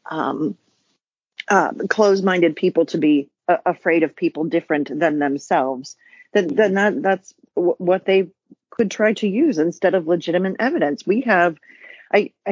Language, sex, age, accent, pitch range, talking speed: English, female, 40-59, American, 165-230 Hz, 150 wpm